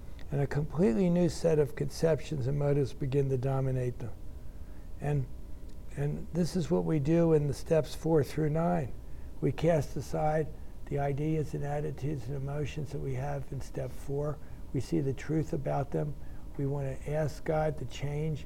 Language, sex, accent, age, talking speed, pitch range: English, male, American, 60-79, 175 wpm, 125-155 Hz